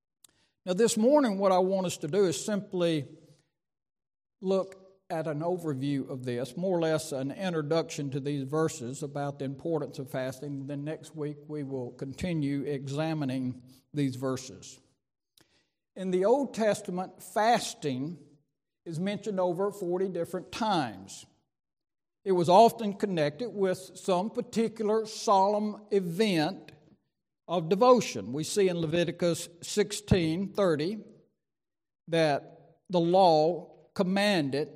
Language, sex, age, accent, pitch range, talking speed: English, male, 60-79, American, 145-190 Hz, 120 wpm